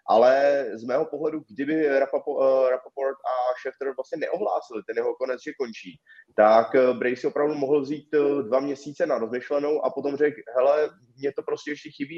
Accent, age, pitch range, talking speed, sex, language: native, 20-39, 120-155 Hz, 170 wpm, male, Czech